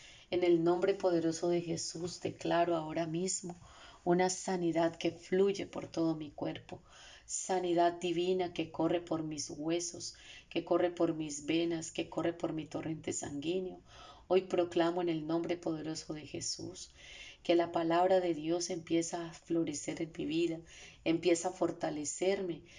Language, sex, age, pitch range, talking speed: Spanish, female, 30-49, 165-180 Hz, 150 wpm